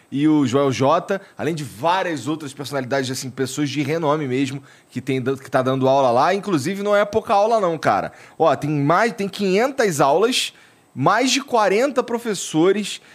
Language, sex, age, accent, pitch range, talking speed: Portuguese, male, 20-39, Brazilian, 130-185 Hz, 175 wpm